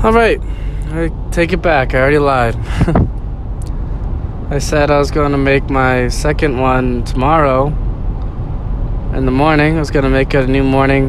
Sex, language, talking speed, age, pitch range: male, English, 160 wpm, 20-39, 110-140 Hz